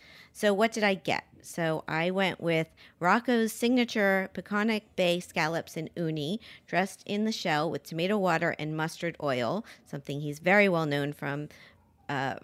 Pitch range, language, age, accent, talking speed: 140-190 Hz, English, 40-59, American, 160 wpm